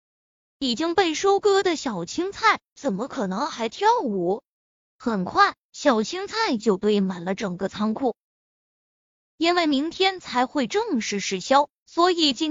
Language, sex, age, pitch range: Chinese, female, 20-39, 235-355 Hz